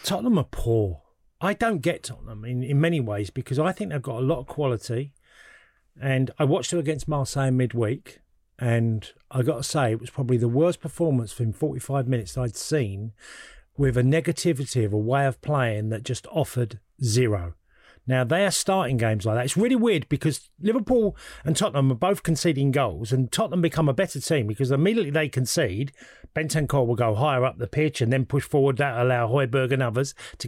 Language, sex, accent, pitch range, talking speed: English, male, British, 125-155 Hz, 195 wpm